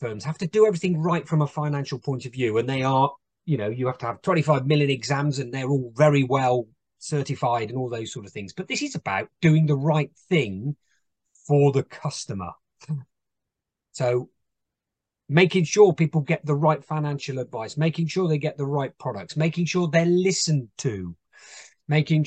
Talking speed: 185 wpm